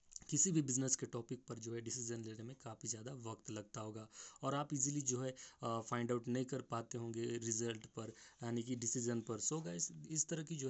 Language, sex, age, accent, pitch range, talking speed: Hindi, male, 20-39, native, 115-130 Hz, 225 wpm